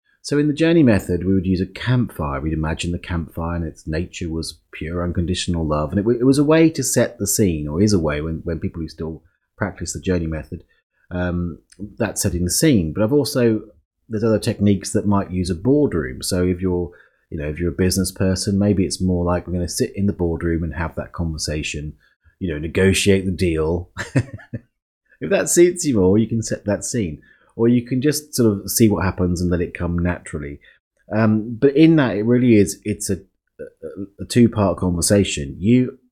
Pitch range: 85-115 Hz